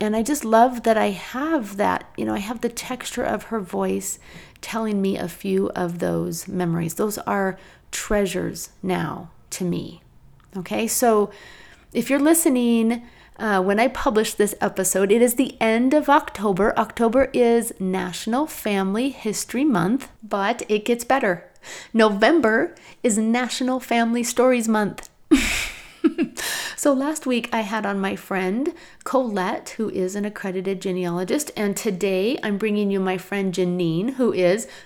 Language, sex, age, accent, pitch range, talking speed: English, female, 30-49, American, 190-245 Hz, 150 wpm